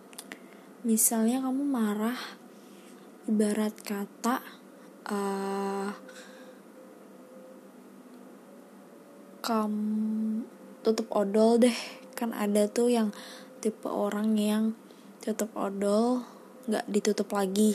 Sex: female